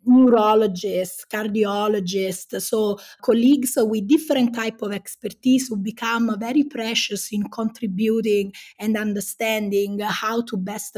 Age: 20-39